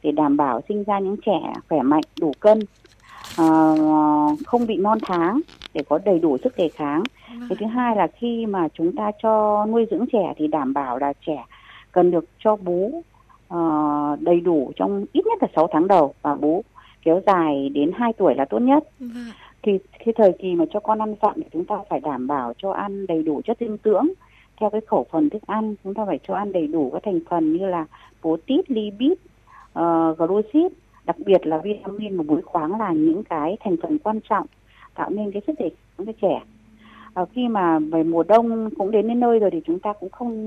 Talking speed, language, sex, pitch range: 220 wpm, Vietnamese, female, 170-245 Hz